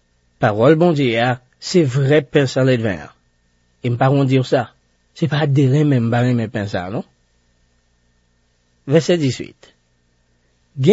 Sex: male